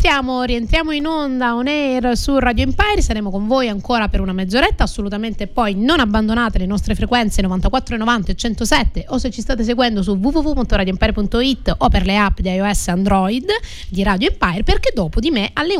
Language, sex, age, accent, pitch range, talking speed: Italian, female, 30-49, native, 205-270 Hz, 190 wpm